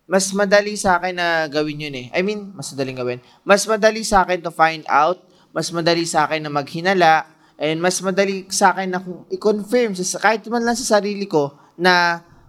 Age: 20-39